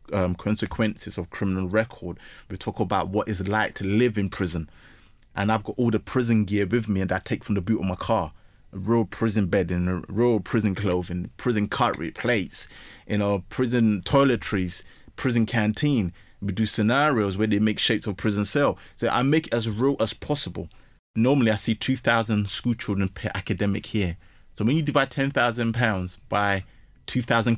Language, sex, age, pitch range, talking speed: English, male, 20-39, 95-115 Hz, 185 wpm